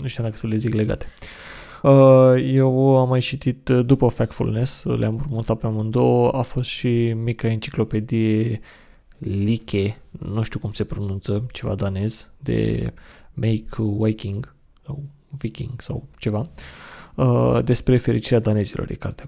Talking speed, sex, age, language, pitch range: 125 wpm, male, 20-39, Romanian, 105-125 Hz